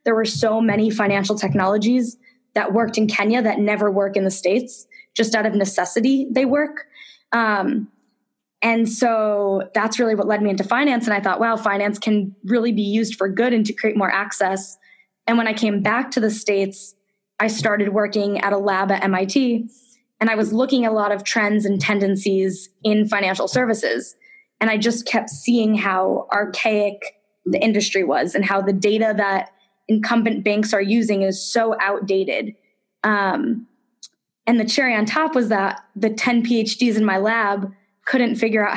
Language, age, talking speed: English, 20-39, 180 wpm